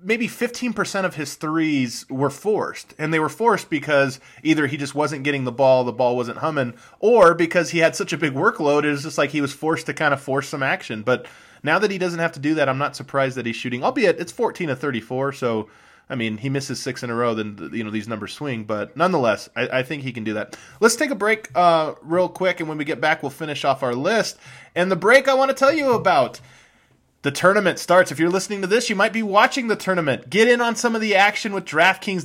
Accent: American